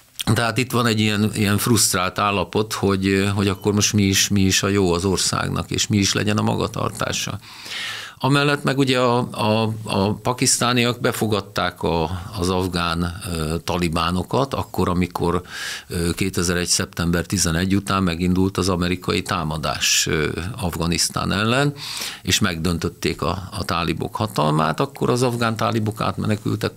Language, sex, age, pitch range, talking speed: Hungarian, male, 50-69, 90-115 Hz, 135 wpm